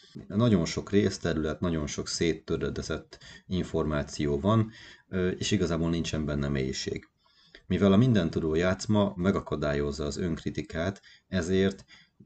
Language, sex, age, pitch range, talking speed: Hungarian, male, 30-49, 75-95 Hz, 105 wpm